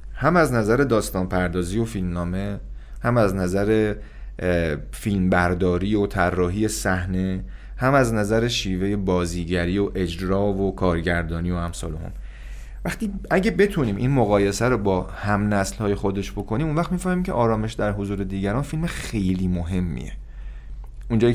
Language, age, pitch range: Persian, 30-49, 95-120 Hz